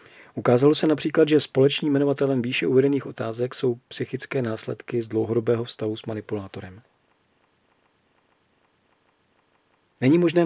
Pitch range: 115-145 Hz